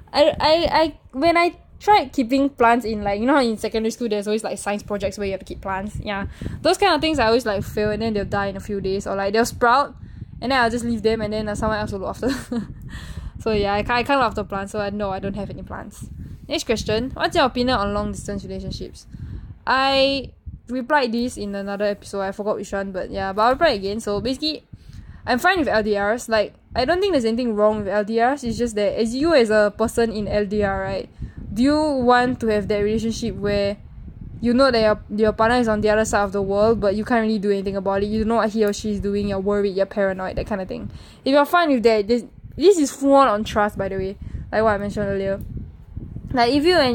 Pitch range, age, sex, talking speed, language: 205-245 Hz, 10-29, female, 250 wpm, English